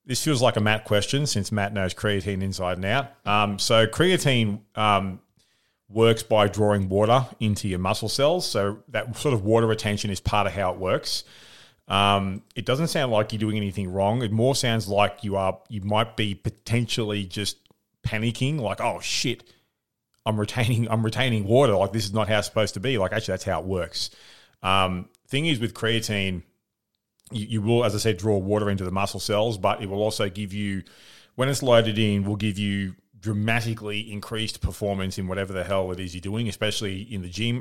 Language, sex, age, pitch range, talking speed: English, male, 30-49, 100-115 Hz, 200 wpm